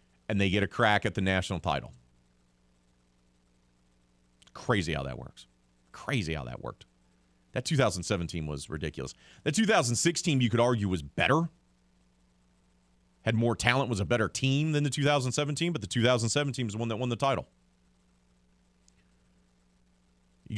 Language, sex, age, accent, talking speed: English, male, 40-59, American, 145 wpm